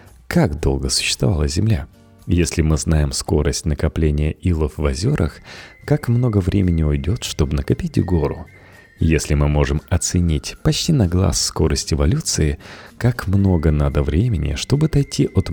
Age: 30-49